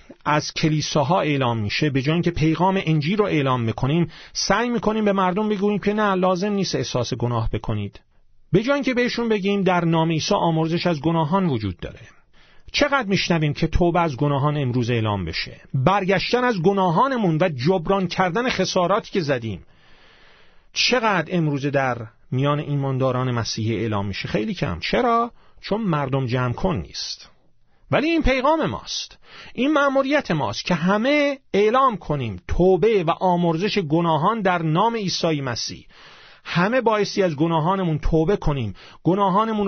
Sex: male